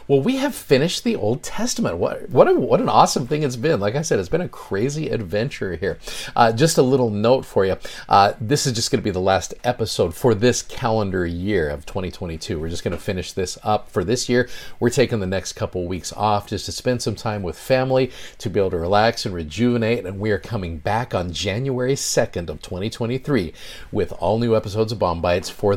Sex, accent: male, American